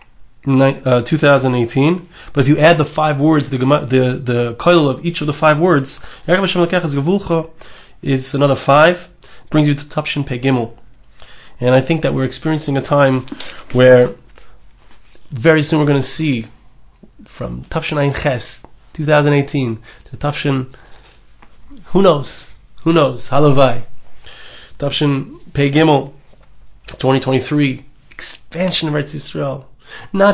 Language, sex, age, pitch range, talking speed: English, male, 20-39, 135-165 Hz, 125 wpm